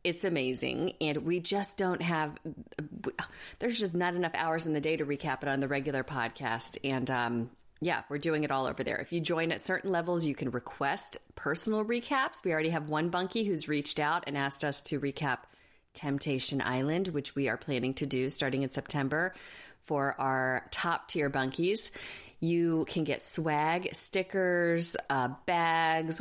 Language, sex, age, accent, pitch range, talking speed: English, female, 30-49, American, 130-170 Hz, 175 wpm